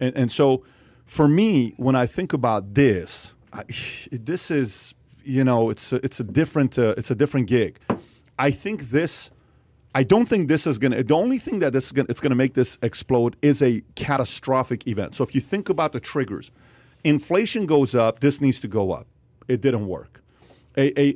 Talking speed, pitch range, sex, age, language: 200 wpm, 125-150 Hz, male, 40-59, English